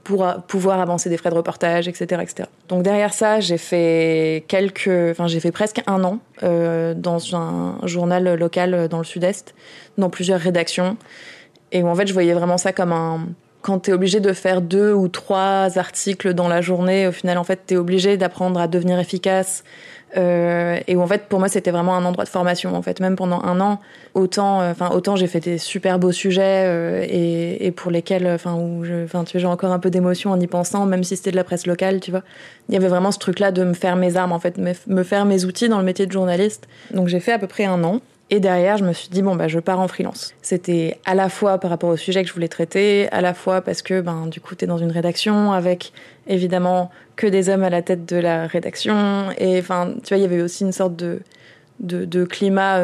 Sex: female